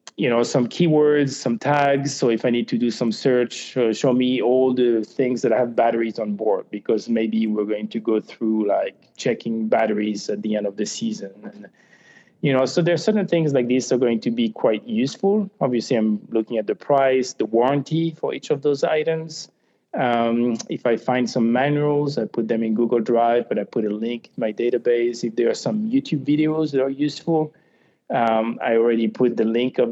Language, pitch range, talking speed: English, 115-145 Hz, 215 wpm